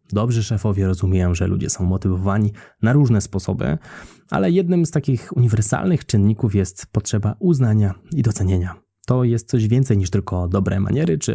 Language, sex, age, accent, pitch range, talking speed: Polish, male, 20-39, native, 95-130 Hz, 160 wpm